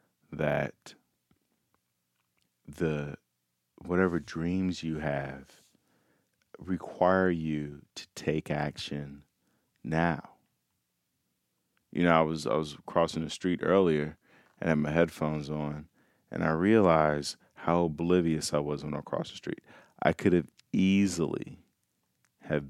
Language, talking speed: English, 115 wpm